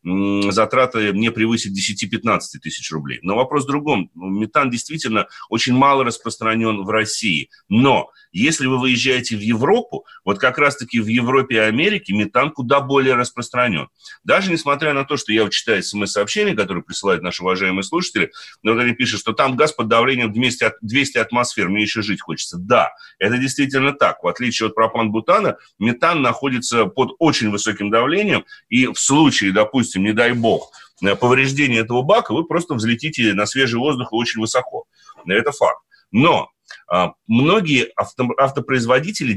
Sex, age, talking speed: male, 30-49, 150 wpm